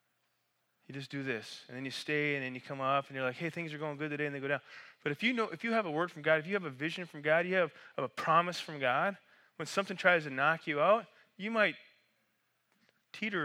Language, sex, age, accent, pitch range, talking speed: English, male, 20-39, American, 145-185 Hz, 270 wpm